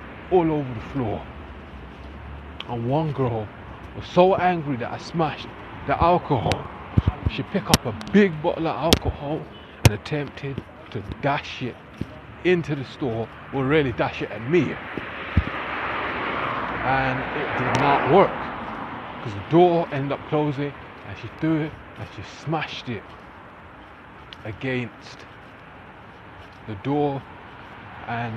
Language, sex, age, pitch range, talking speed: English, male, 20-39, 100-135 Hz, 125 wpm